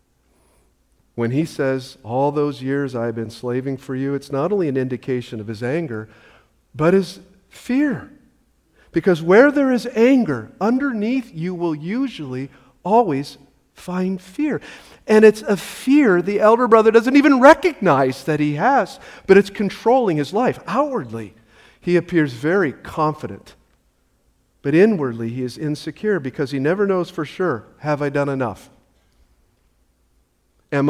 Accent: American